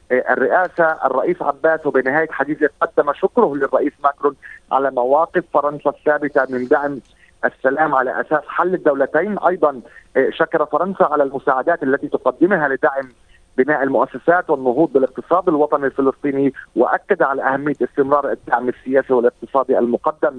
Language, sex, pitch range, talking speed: Arabic, male, 130-155 Hz, 125 wpm